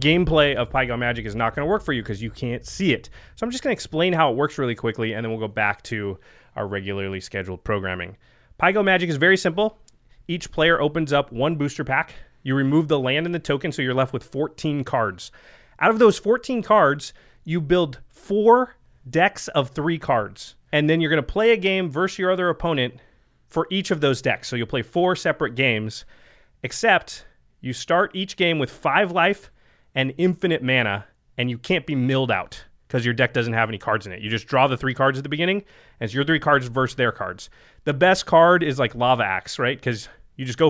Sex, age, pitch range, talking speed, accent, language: male, 30-49, 120-160 Hz, 225 wpm, American, English